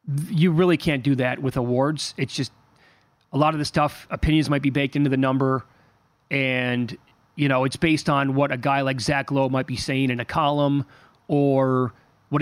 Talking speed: 200 wpm